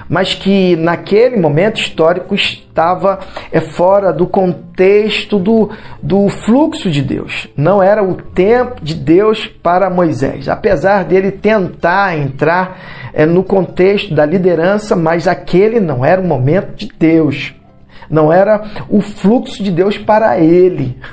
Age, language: 40-59, Portuguese